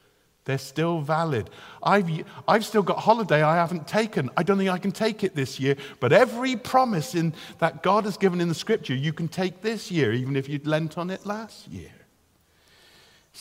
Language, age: English, 50-69